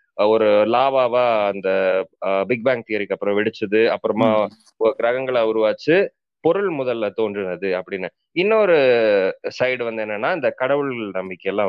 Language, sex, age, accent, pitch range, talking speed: Tamil, male, 20-39, native, 110-150 Hz, 115 wpm